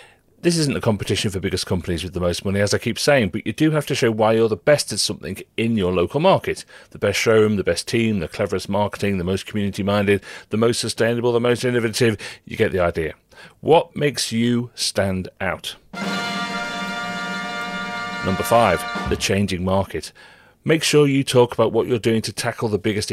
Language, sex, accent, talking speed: English, male, British, 195 wpm